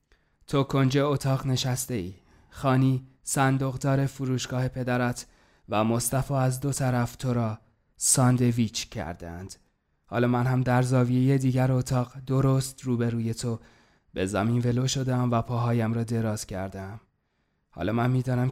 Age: 20-39